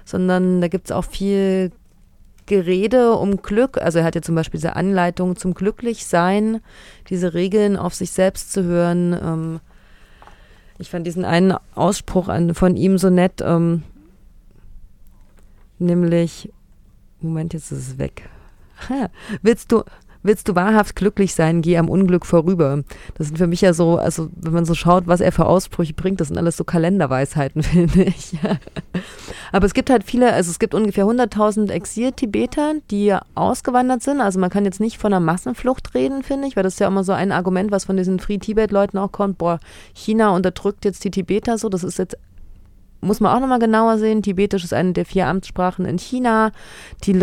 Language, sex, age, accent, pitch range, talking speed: German, female, 30-49, German, 170-205 Hz, 175 wpm